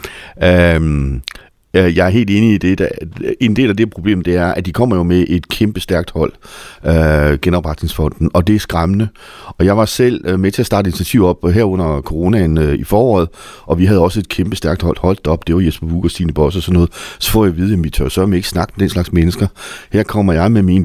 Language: Danish